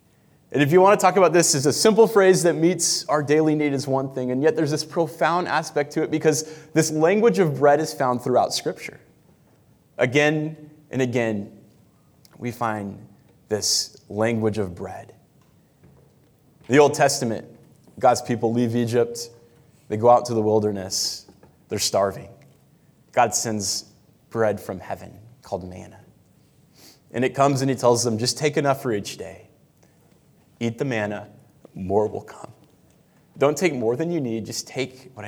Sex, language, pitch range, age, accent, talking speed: male, English, 115-150 Hz, 20-39, American, 165 wpm